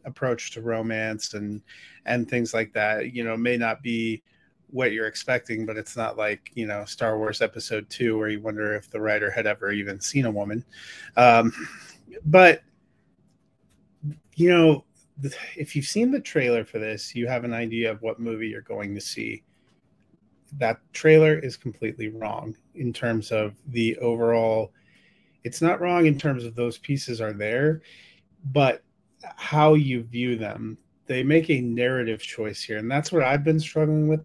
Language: English